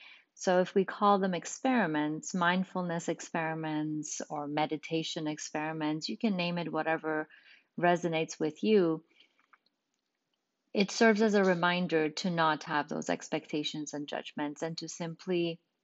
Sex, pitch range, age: female, 160-195 Hz, 30-49